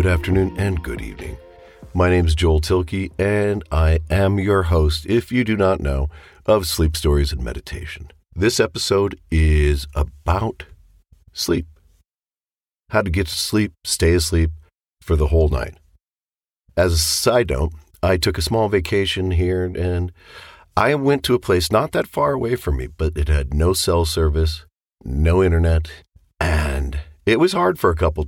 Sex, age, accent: male, 50-69, American